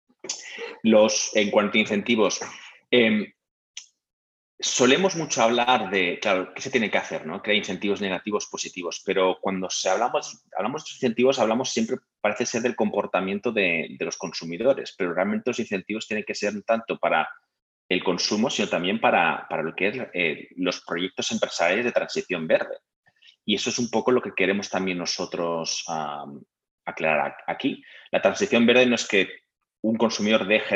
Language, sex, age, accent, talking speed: Spanish, male, 30-49, Spanish, 170 wpm